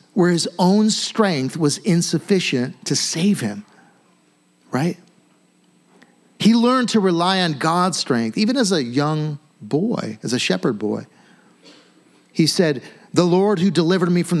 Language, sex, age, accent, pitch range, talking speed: English, male, 50-69, American, 130-190 Hz, 140 wpm